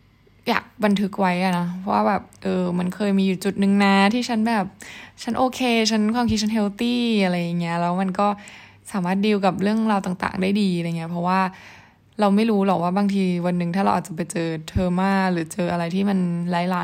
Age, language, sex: 20-39, Thai, female